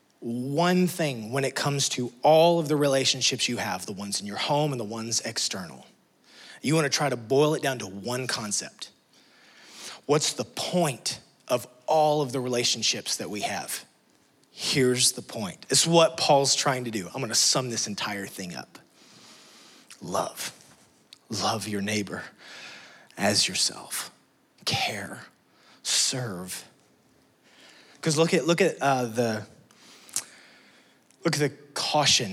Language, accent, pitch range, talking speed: English, American, 110-140 Hz, 145 wpm